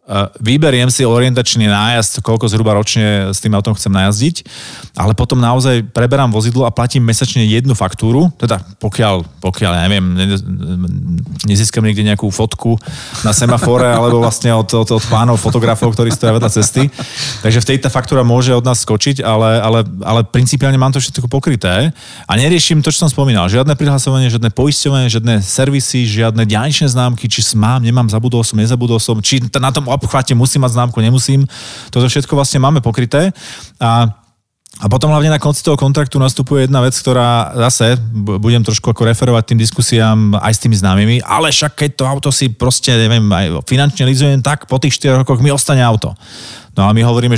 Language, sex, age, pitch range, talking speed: Slovak, male, 30-49, 110-135 Hz, 175 wpm